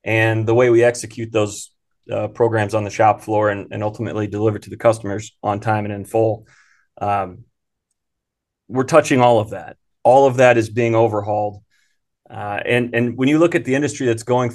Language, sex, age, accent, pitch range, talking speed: English, male, 30-49, American, 110-125 Hz, 200 wpm